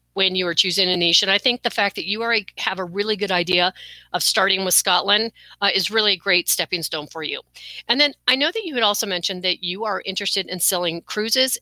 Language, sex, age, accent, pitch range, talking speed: English, female, 40-59, American, 185-225 Hz, 250 wpm